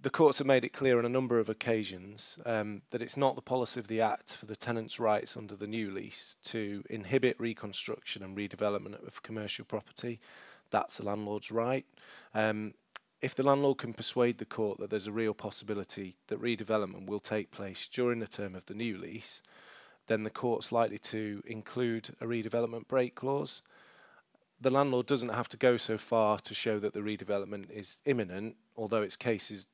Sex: male